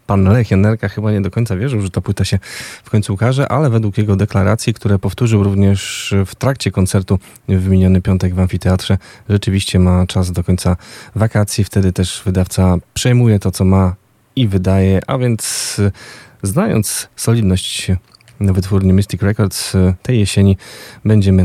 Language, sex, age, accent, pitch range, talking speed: Polish, male, 20-39, native, 95-115 Hz, 155 wpm